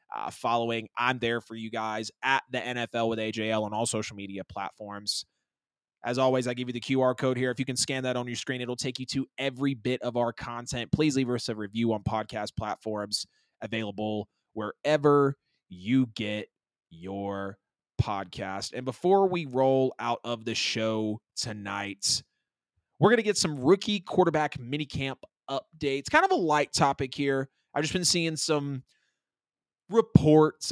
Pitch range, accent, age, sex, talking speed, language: 110-150 Hz, American, 20-39, male, 170 wpm, English